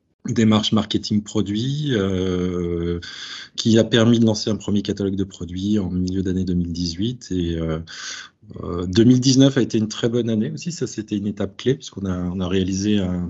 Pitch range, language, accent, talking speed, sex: 90-110 Hz, French, French, 170 wpm, male